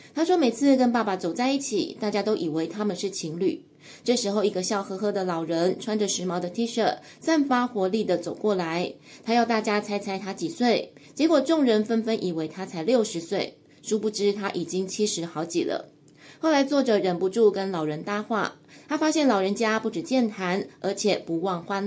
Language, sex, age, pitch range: Chinese, female, 20-39, 180-230 Hz